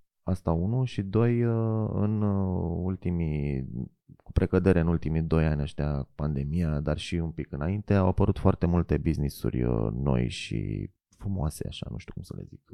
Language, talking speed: Romanian, 165 wpm